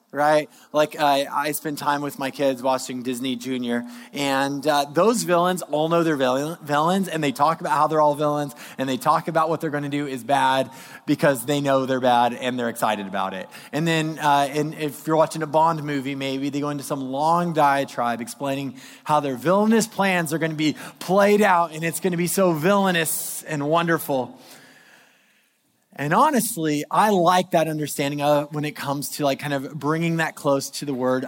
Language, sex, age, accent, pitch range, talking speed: English, male, 20-39, American, 135-170 Hz, 205 wpm